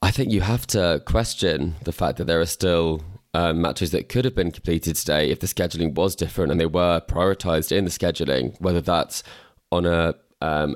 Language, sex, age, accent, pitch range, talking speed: English, male, 20-39, British, 85-100 Hz, 205 wpm